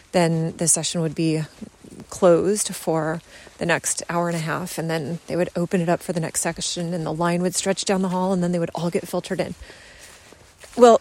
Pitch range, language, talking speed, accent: 170-205 Hz, English, 225 wpm, American